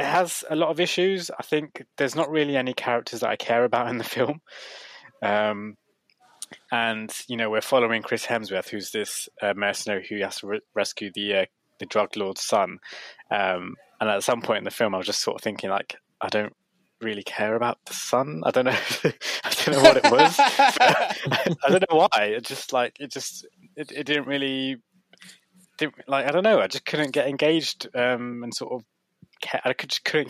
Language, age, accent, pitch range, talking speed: English, 20-39, British, 105-140 Hz, 210 wpm